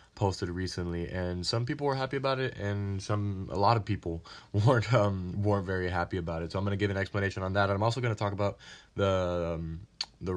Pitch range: 85-100 Hz